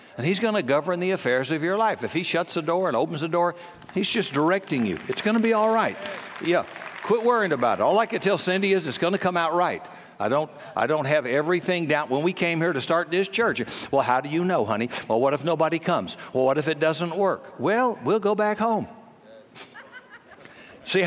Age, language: 60-79, English